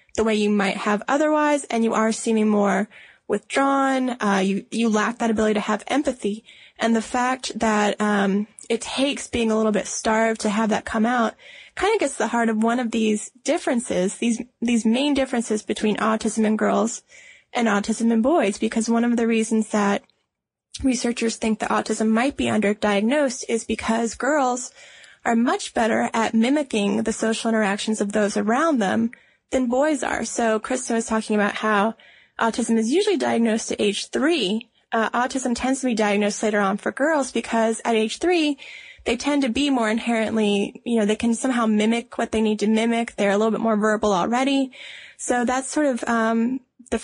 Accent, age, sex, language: American, 20-39, female, English